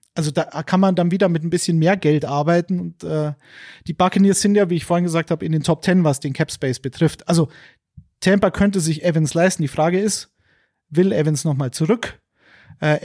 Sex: male